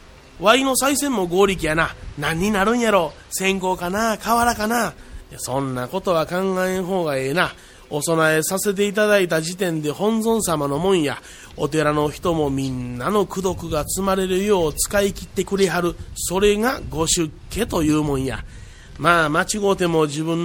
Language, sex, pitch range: Japanese, male, 150-195 Hz